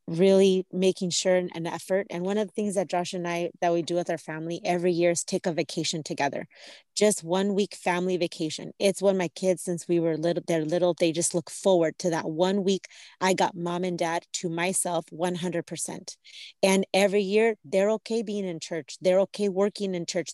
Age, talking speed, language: 30-49, 210 wpm, English